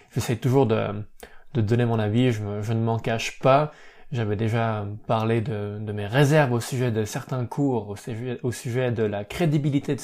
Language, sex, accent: French, male, French